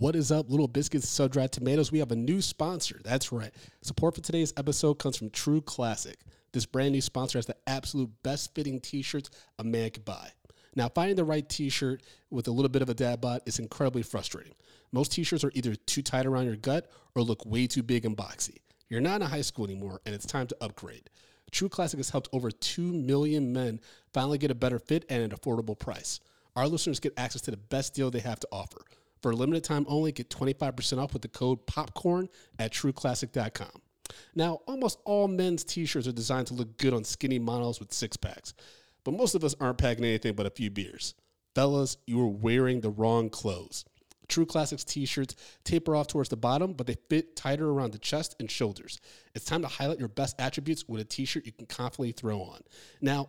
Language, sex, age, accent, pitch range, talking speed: English, male, 30-49, American, 115-150 Hz, 210 wpm